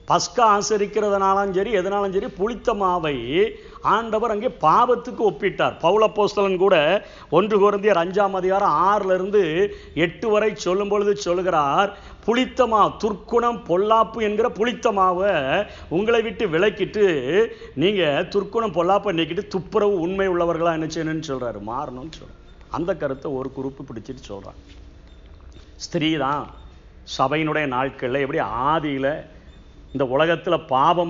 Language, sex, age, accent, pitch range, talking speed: Tamil, male, 50-69, native, 140-205 Hz, 40 wpm